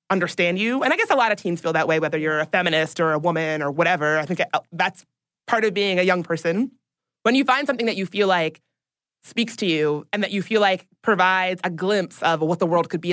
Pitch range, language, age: 165-205 Hz, English, 20-39